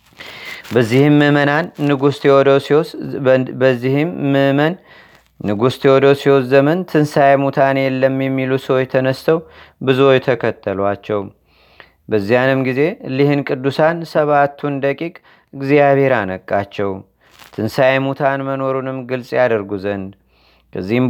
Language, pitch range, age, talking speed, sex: Amharic, 130-140 Hz, 30-49, 90 wpm, male